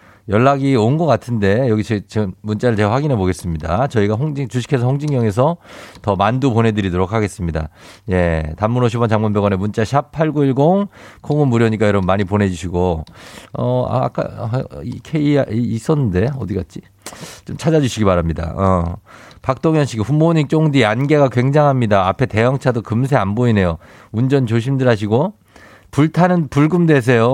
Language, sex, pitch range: Korean, male, 100-145 Hz